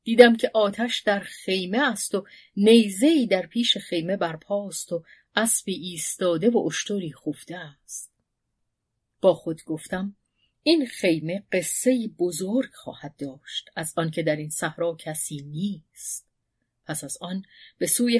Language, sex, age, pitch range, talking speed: Persian, female, 40-59, 155-210 Hz, 130 wpm